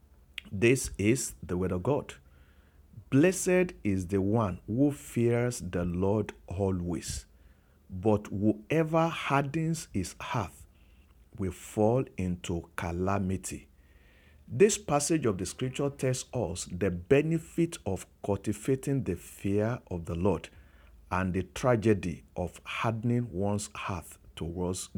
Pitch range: 85-120 Hz